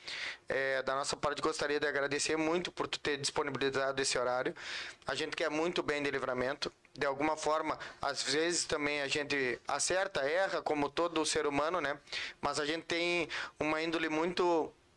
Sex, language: male, Portuguese